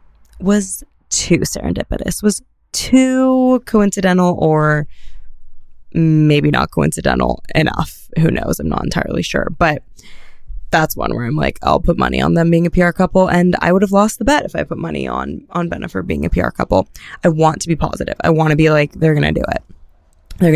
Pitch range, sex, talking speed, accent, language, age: 135-180 Hz, female, 190 wpm, American, English, 20-39